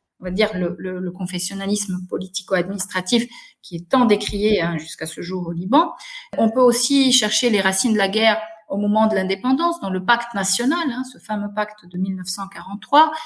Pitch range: 190-260 Hz